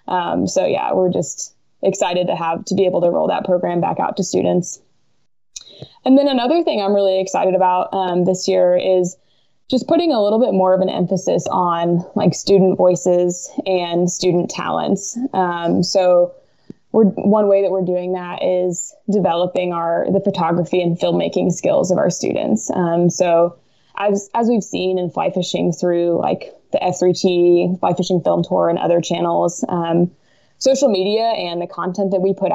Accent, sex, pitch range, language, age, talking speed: American, female, 175-195 Hz, English, 20-39, 175 wpm